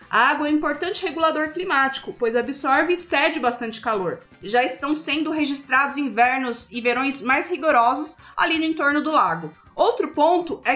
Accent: Brazilian